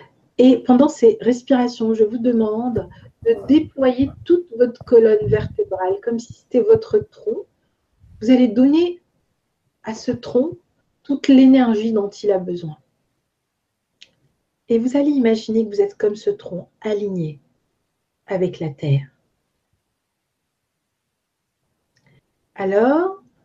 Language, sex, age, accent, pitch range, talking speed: French, female, 50-69, French, 185-260 Hz, 115 wpm